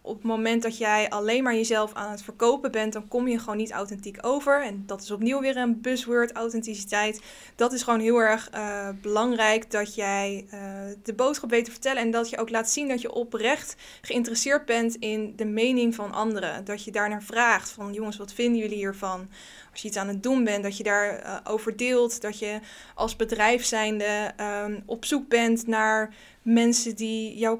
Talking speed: 200 wpm